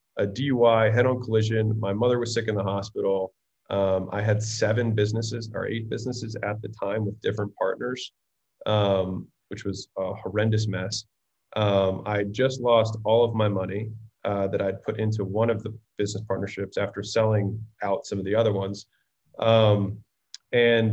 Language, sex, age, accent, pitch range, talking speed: English, male, 20-39, American, 100-120 Hz, 170 wpm